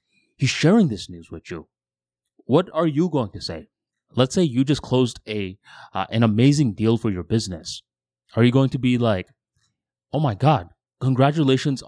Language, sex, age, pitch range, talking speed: English, male, 20-39, 105-135 Hz, 175 wpm